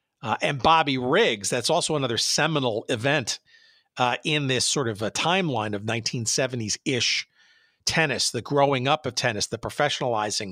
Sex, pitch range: male, 120-150 Hz